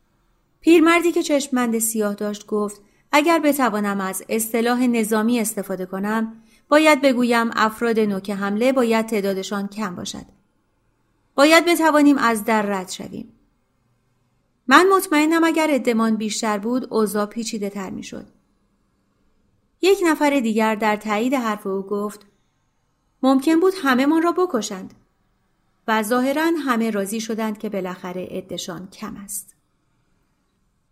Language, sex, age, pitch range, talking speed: Persian, female, 30-49, 195-255 Hz, 120 wpm